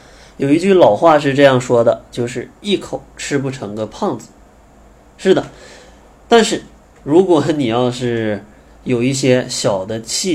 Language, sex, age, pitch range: Chinese, male, 20-39, 105-140 Hz